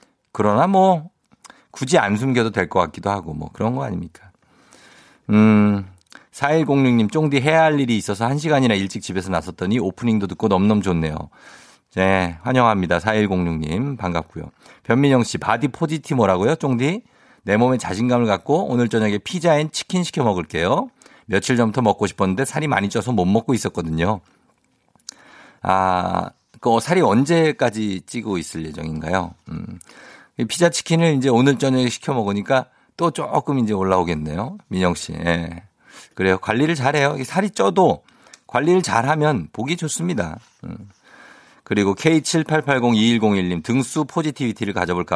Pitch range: 95-145 Hz